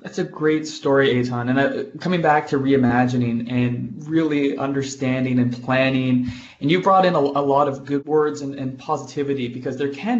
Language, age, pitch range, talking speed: English, 20-39, 130-150 Hz, 190 wpm